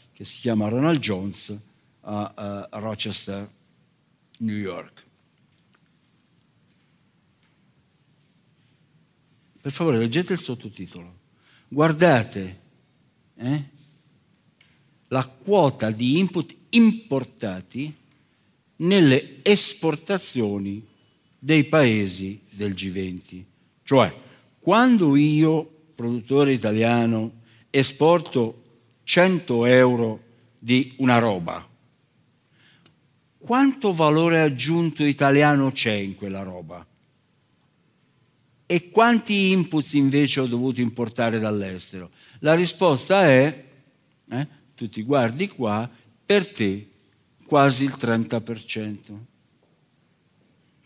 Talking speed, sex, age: 80 wpm, male, 60-79